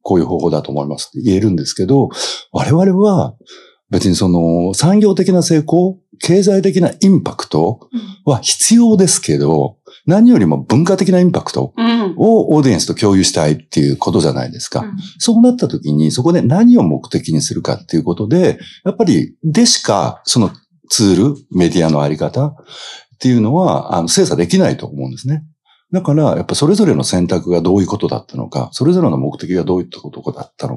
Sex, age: male, 60-79